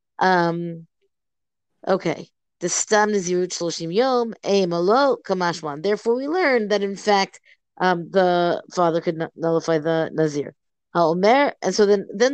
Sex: female